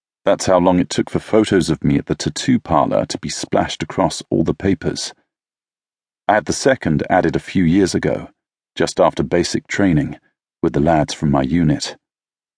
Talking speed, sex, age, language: 185 wpm, male, 40-59, English